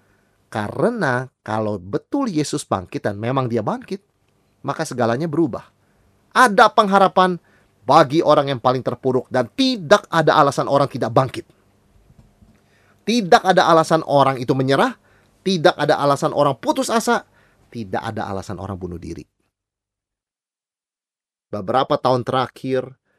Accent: native